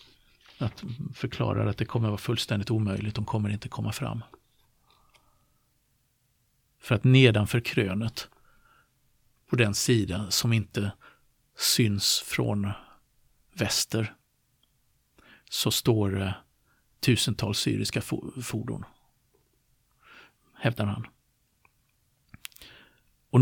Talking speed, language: 85 wpm, Swedish